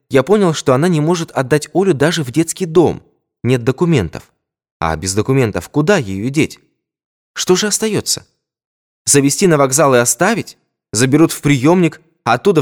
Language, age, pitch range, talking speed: Russian, 20-39, 105-165 Hz, 150 wpm